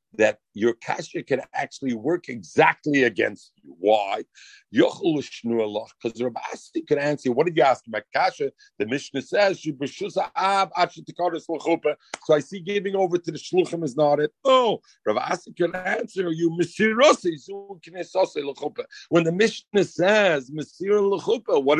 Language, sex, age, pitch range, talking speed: English, male, 50-69, 140-205 Hz, 125 wpm